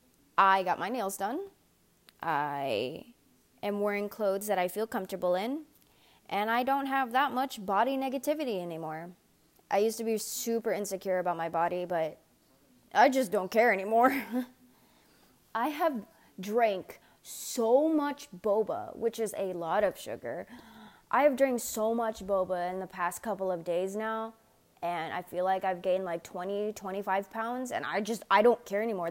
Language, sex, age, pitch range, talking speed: English, female, 20-39, 190-250 Hz, 165 wpm